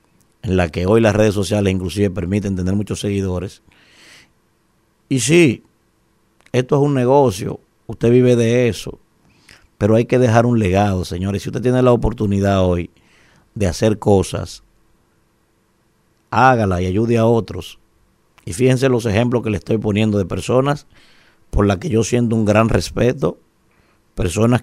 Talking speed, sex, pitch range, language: 150 wpm, male, 105-125 Hz, Spanish